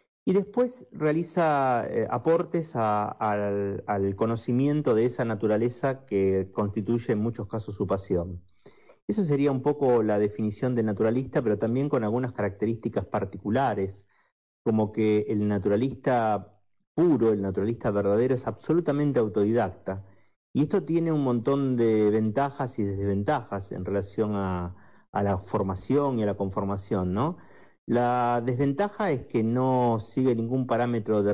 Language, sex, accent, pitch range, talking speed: Spanish, male, Argentinian, 105-140 Hz, 140 wpm